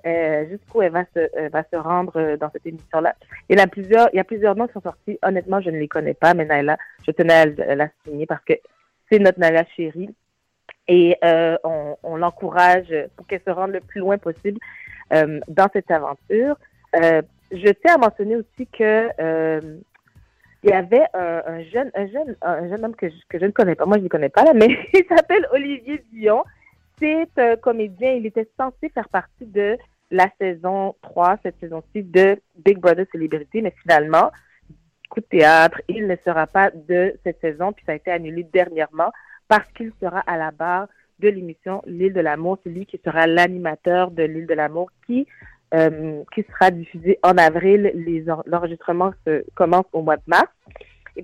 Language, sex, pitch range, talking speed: French, female, 165-205 Hz, 210 wpm